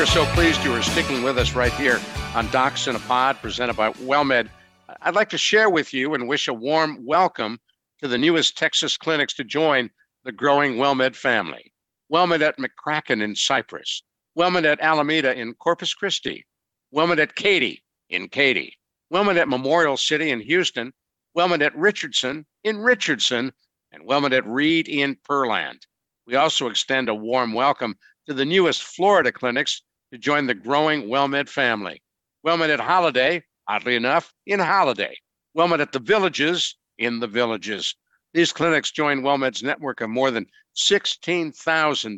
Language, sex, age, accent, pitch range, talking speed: English, male, 60-79, American, 125-165 Hz, 160 wpm